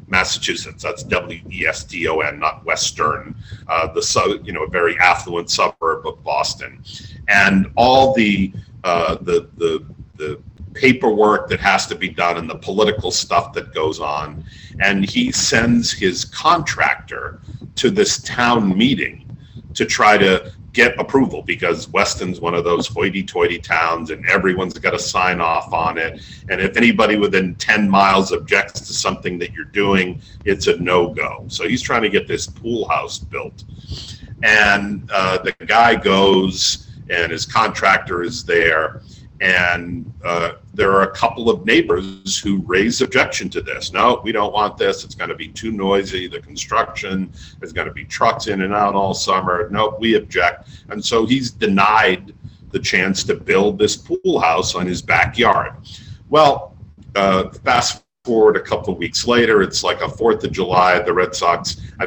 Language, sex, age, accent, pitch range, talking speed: English, male, 40-59, American, 90-110 Hz, 160 wpm